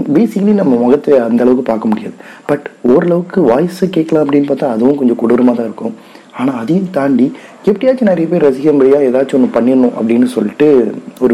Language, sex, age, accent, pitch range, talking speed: Tamil, male, 30-49, native, 120-195 Hz, 165 wpm